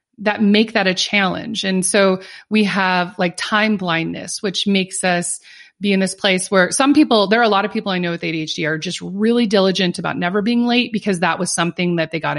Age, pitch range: 30-49, 180-235 Hz